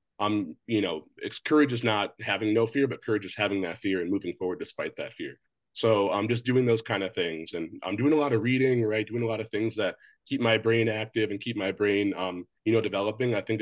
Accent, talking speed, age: American, 265 wpm, 30-49